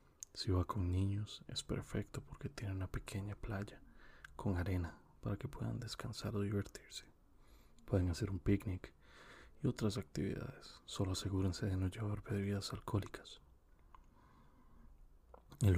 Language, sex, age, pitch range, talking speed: English, male, 30-49, 90-110 Hz, 130 wpm